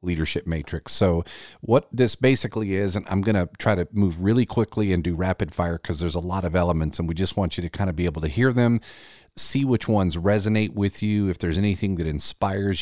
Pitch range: 85-105 Hz